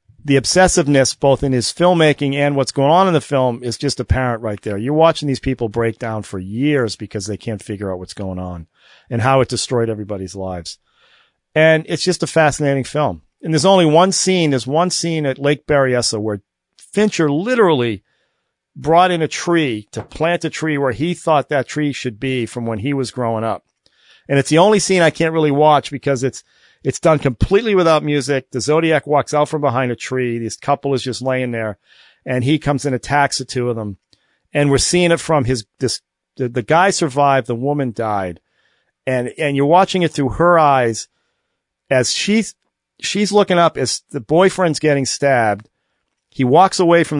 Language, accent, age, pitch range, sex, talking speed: English, American, 40-59, 120-155 Hz, male, 200 wpm